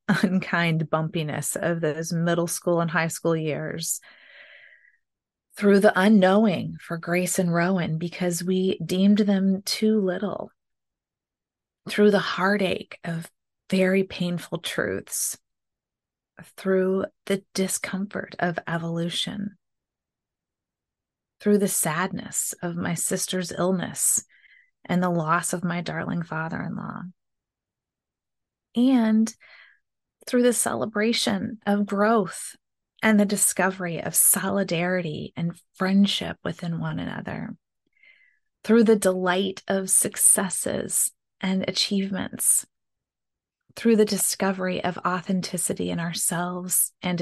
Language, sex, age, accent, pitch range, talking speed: English, female, 30-49, American, 175-205 Hz, 100 wpm